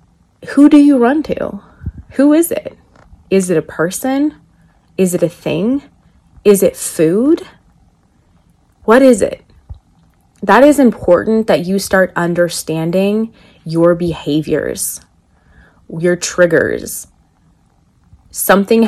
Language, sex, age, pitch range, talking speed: English, female, 20-39, 150-190 Hz, 110 wpm